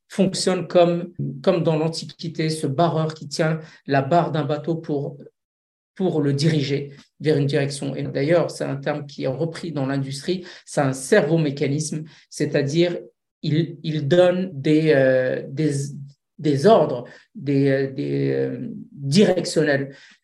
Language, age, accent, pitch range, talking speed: French, 50-69, French, 140-170 Hz, 135 wpm